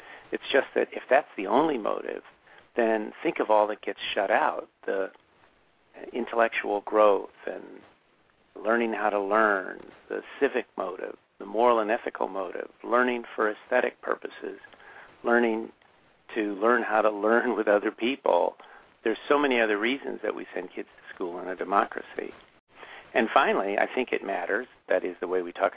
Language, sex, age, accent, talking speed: English, male, 50-69, American, 165 wpm